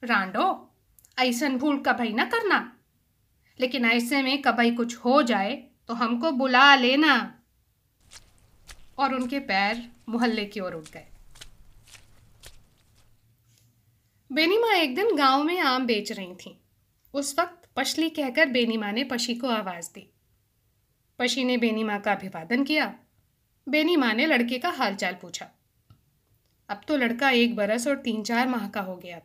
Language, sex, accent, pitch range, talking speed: Hindi, female, native, 165-270 Hz, 150 wpm